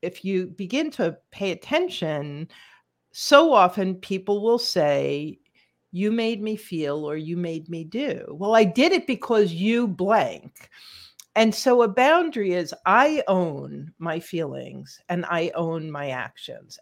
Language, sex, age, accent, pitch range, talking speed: English, female, 50-69, American, 165-235 Hz, 145 wpm